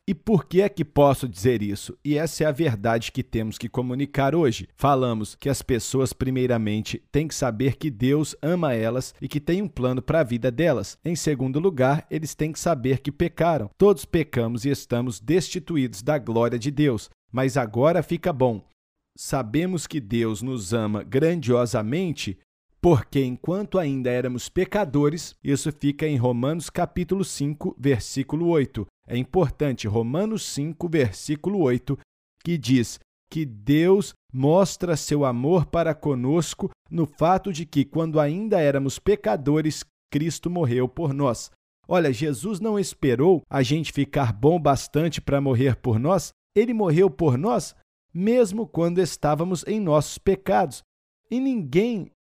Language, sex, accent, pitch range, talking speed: Portuguese, male, Brazilian, 130-170 Hz, 150 wpm